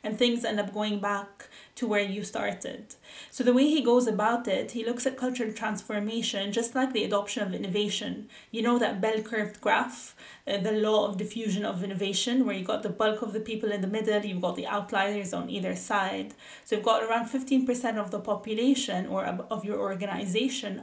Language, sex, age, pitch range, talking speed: English, female, 20-39, 210-245 Hz, 200 wpm